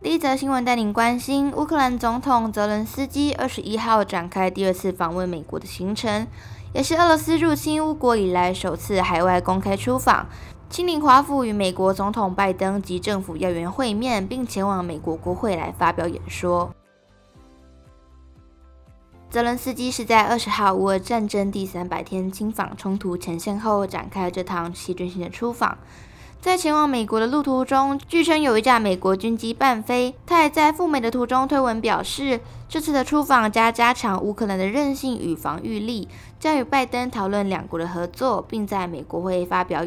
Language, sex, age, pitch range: Chinese, female, 20-39, 175-250 Hz